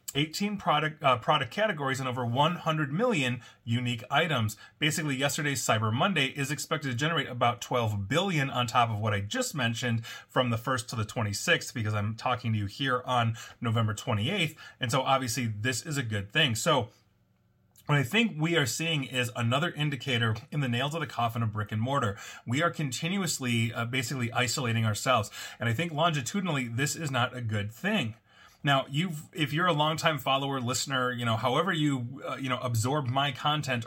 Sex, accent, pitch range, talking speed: male, American, 115-145 Hz, 190 wpm